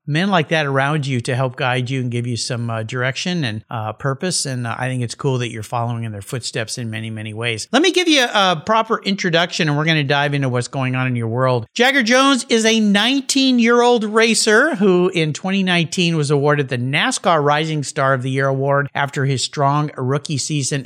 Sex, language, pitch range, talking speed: male, English, 140-205 Hz, 220 wpm